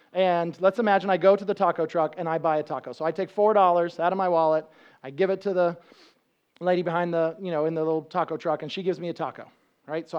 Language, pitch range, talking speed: English, 175-220 Hz, 265 wpm